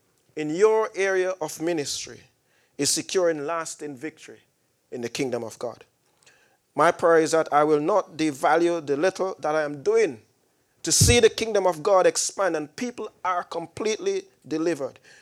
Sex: male